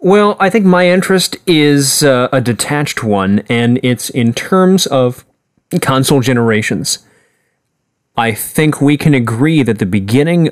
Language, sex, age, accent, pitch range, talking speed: English, male, 30-49, American, 105-135 Hz, 145 wpm